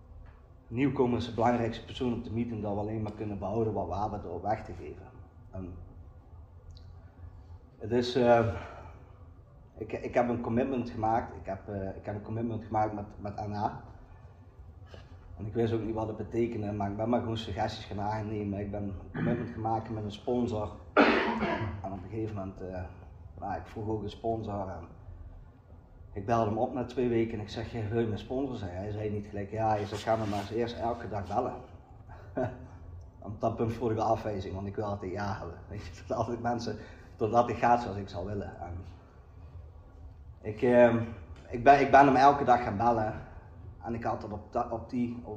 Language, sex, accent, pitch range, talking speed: Dutch, male, Dutch, 95-115 Hz, 180 wpm